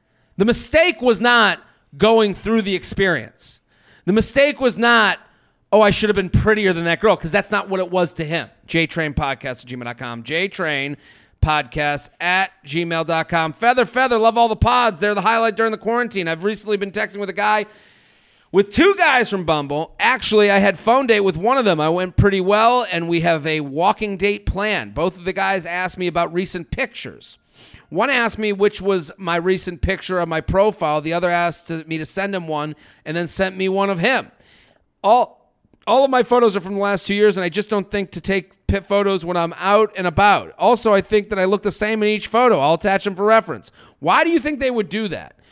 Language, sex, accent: English, male, American